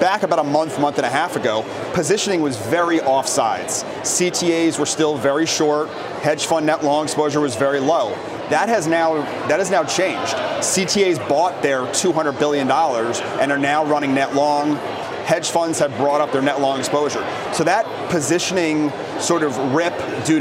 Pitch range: 145-170 Hz